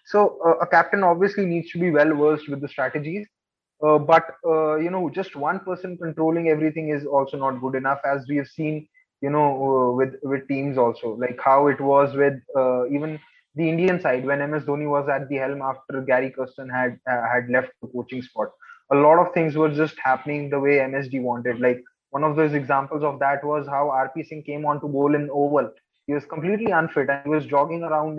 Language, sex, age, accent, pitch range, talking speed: English, male, 20-39, Indian, 140-170 Hz, 220 wpm